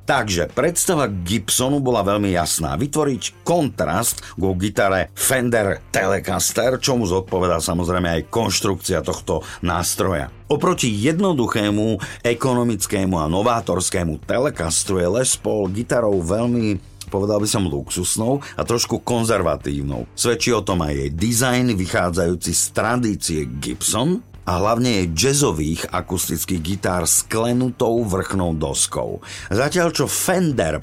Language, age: Slovak, 50-69